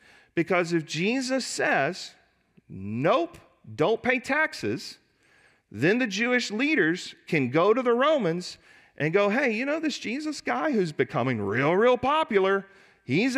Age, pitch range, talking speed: 40-59, 160-240 Hz, 140 wpm